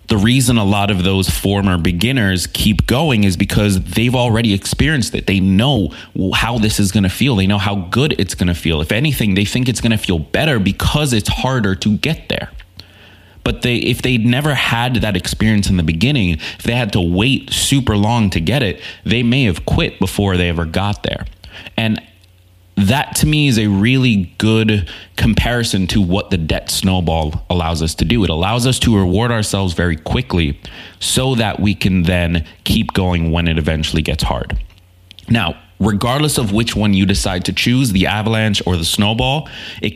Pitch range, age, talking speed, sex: 90-115 Hz, 20-39, 195 wpm, male